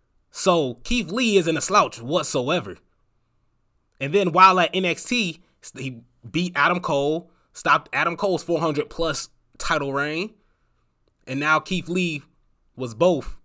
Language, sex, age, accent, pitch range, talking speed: English, male, 20-39, American, 120-165 Hz, 130 wpm